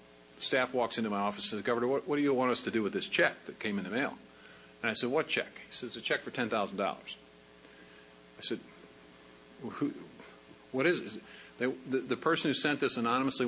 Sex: male